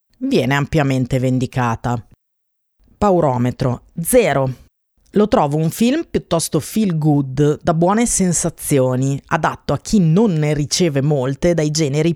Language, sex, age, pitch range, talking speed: Italian, female, 30-49, 135-185 Hz, 120 wpm